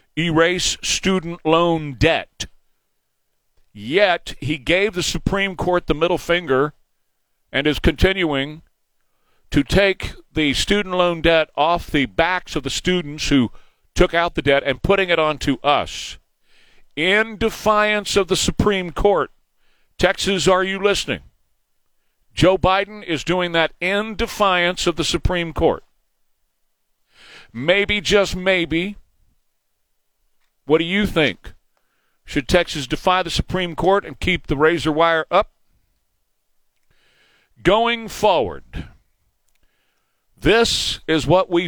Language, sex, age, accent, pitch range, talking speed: English, male, 50-69, American, 140-180 Hz, 120 wpm